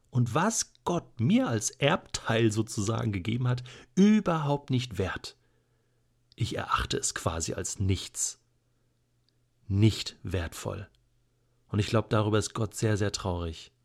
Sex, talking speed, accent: male, 125 wpm, German